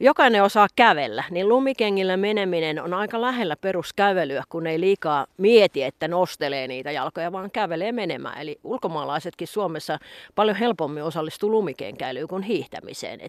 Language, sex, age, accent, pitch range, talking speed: Finnish, female, 30-49, native, 155-200 Hz, 135 wpm